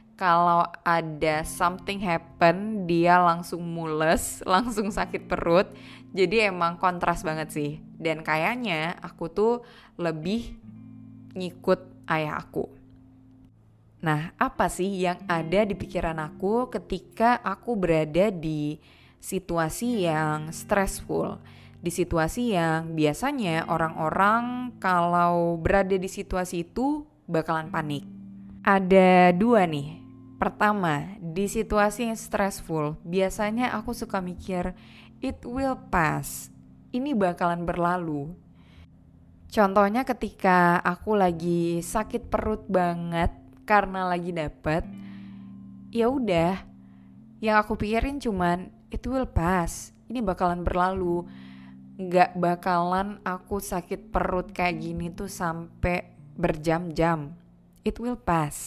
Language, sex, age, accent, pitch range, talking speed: Indonesian, female, 20-39, native, 155-200 Hz, 105 wpm